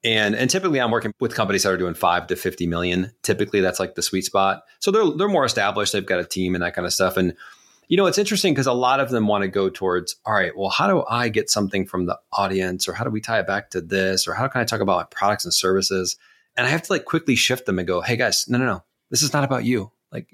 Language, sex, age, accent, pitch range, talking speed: English, male, 30-49, American, 95-135 Hz, 290 wpm